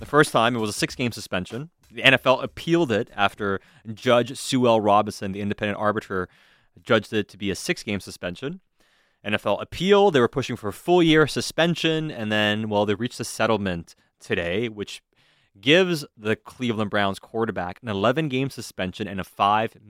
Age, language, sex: 20-39, English, male